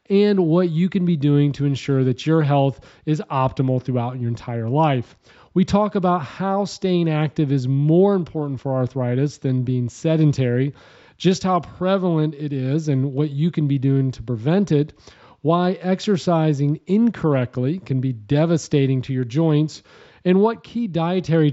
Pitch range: 130-170 Hz